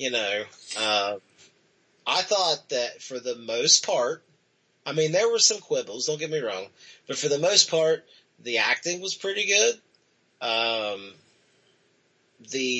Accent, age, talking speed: American, 30-49, 145 wpm